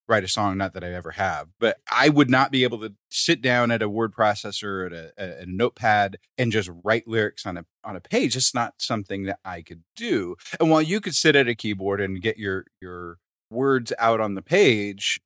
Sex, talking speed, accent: male, 230 wpm, American